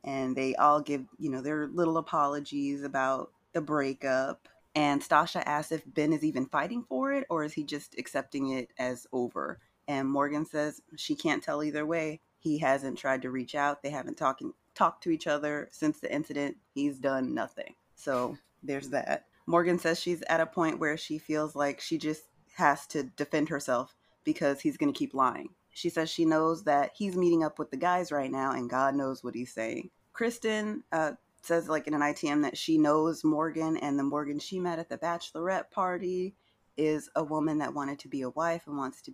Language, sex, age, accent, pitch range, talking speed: English, female, 20-39, American, 135-165 Hz, 205 wpm